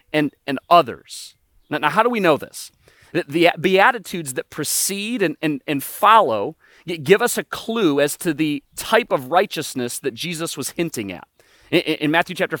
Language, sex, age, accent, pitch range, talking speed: English, male, 30-49, American, 145-195 Hz, 180 wpm